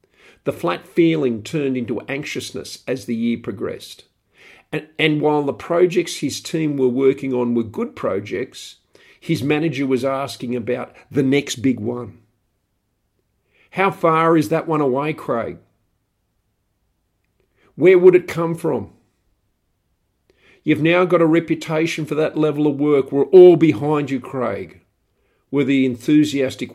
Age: 50-69